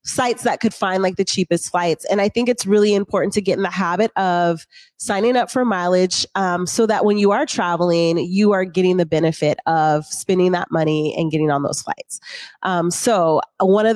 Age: 30-49